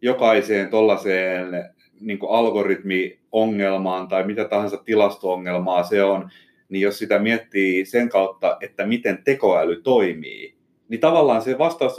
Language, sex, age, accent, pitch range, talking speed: Finnish, male, 30-49, native, 105-155 Hz, 115 wpm